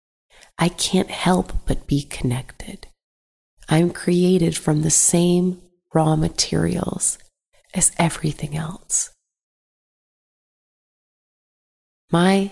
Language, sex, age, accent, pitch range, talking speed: English, female, 30-49, American, 150-180 Hz, 85 wpm